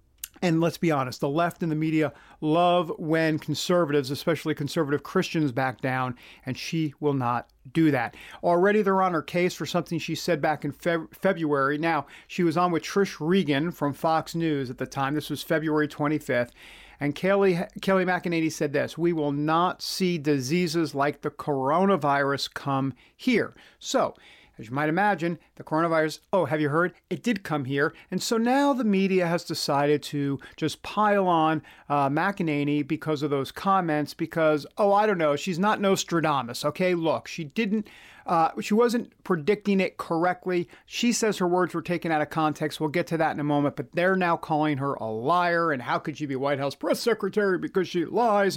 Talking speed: 190 wpm